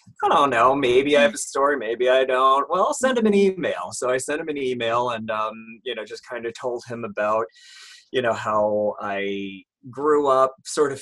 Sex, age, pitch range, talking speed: male, 30-49, 110-145 Hz, 225 wpm